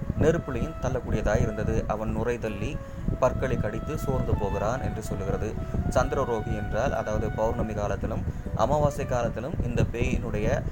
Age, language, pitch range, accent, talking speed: 20-39, Tamil, 105-135 Hz, native, 120 wpm